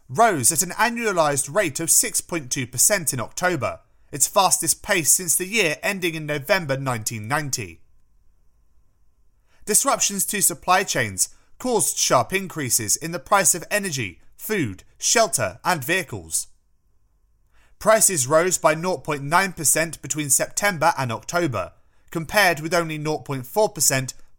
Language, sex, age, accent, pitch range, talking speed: English, male, 30-49, British, 125-190 Hz, 115 wpm